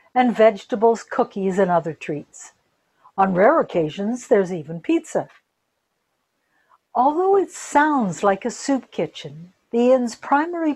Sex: female